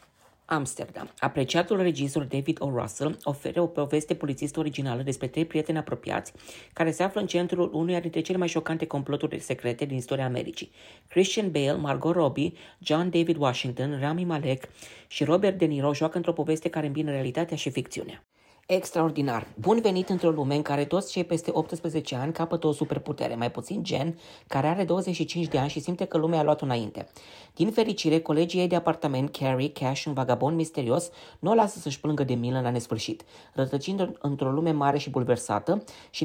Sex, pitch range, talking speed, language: female, 140-170 Hz, 180 wpm, Romanian